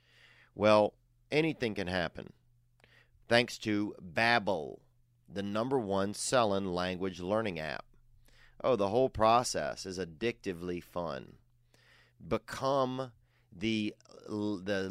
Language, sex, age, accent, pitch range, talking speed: English, male, 30-49, American, 100-120 Hz, 95 wpm